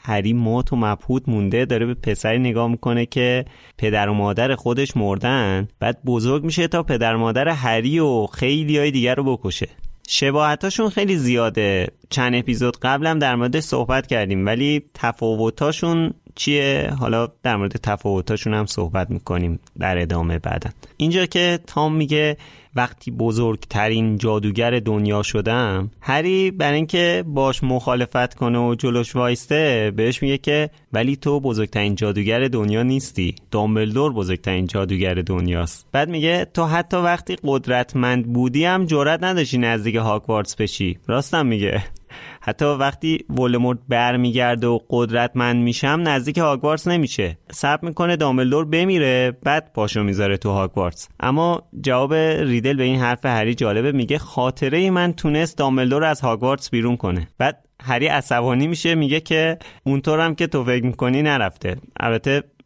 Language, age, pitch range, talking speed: Persian, 30-49, 110-150 Hz, 145 wpm